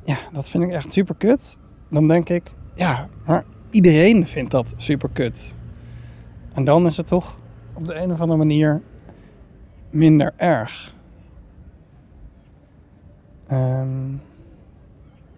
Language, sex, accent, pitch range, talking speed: Dutch, male, Dutch, 105-150 Hz, 120 wpm